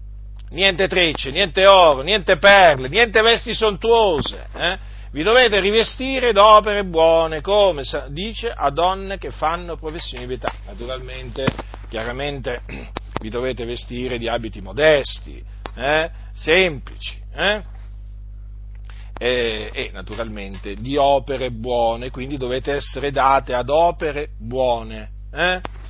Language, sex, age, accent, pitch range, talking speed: Italian, male, 50-69, native, 115-180 Hz, 115 wpm